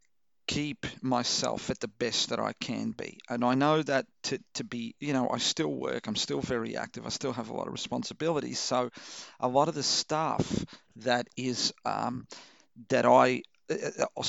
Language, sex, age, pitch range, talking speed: English, male, 40-59, 125-160 Hz, 185 wpm